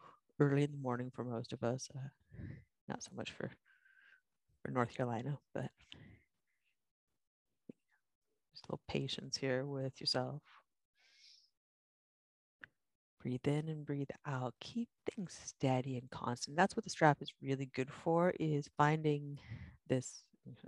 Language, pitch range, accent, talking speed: English, 125-155 Hz, American, 130 wpm